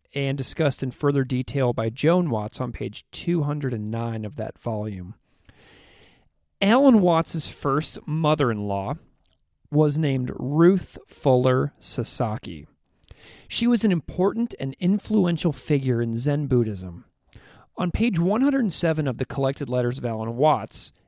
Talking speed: 120 wpm